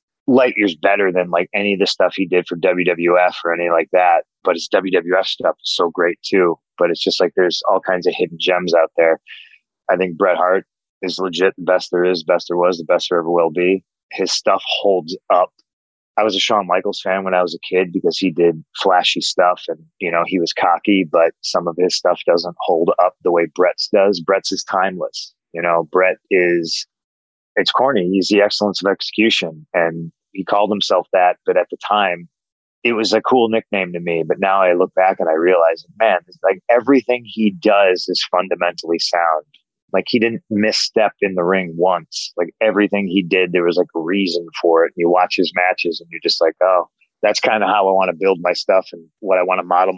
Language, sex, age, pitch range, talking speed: English, male, 30-49, 85-95 Hz, 225 wpm